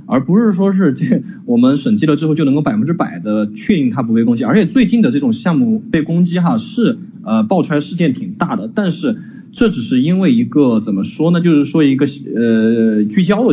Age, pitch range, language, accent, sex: 20-39, 155-230 Hz, Chinese, native, male